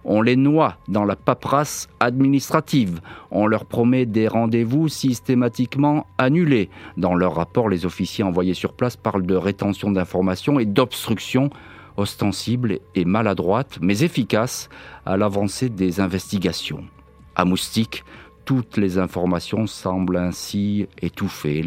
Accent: French